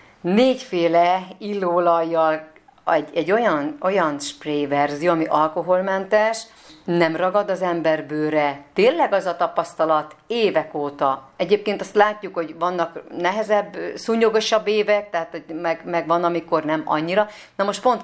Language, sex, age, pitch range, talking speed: Hungarian, female, 40-59, 160-200 Hz, 130 wpm